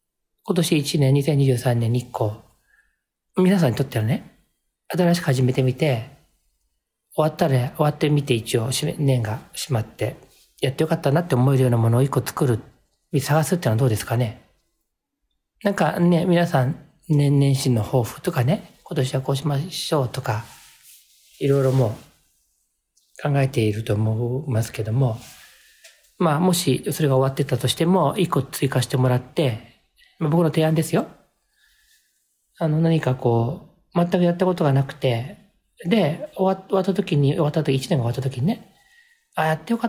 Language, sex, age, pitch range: Japanese, male, 40-59, 125-170 Hz